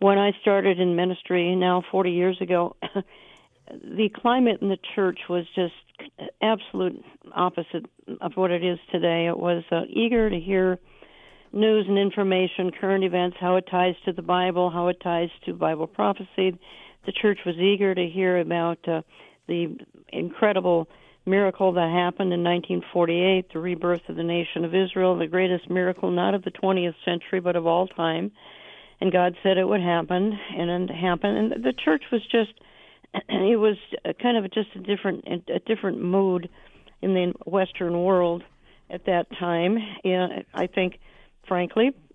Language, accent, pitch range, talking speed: English, American, 175-200 Hz, 160 wpm